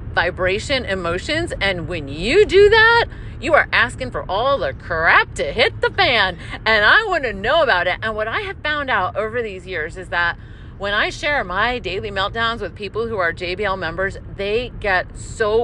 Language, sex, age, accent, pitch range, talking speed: English, female, 40-59, American, 230-355 Hz, 195 wpm